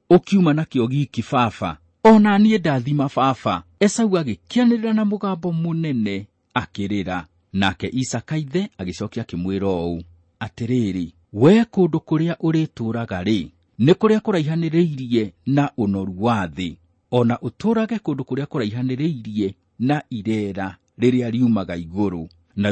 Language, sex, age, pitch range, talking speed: English, male, 50-69, 95-140 Hz, 115 wpm